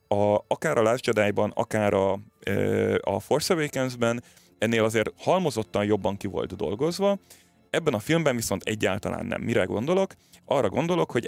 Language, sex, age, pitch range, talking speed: Hungarian, male, 30-49, 100-120 Hz, 145 wpm